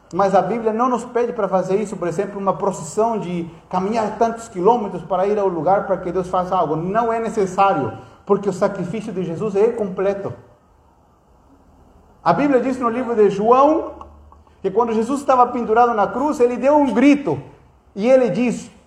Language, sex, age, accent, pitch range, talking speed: Portuguese, male, 50-69, Brazilian, 185-240 Hz, 180 wpm